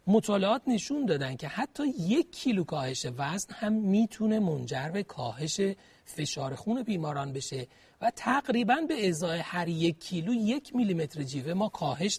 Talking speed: 155 wpm